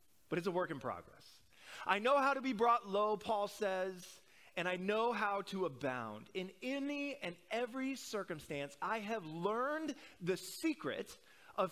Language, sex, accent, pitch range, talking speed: English, male, American, 160-230 Hz, 165 wpm